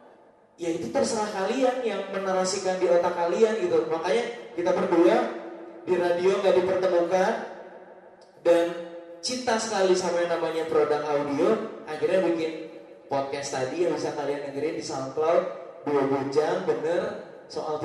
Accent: Indonesian